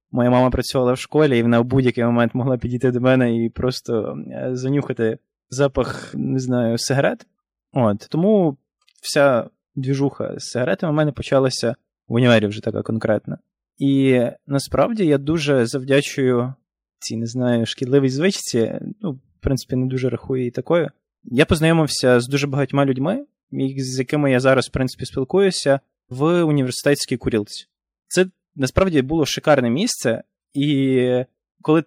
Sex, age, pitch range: male, 20-39, 125-155 Hz